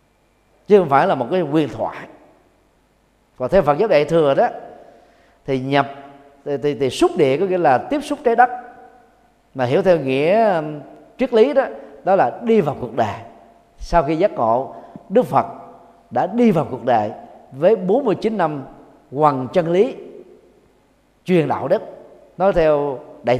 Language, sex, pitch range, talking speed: Vietnamese, male, 145-220 Hz, 165 wpm